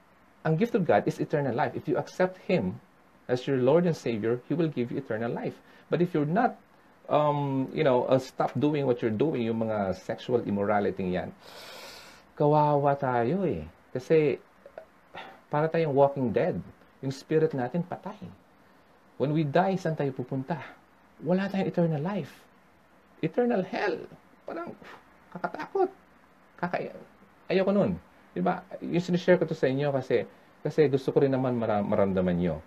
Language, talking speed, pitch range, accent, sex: English, 155 wpm, 110-165 Hz, Filipino, male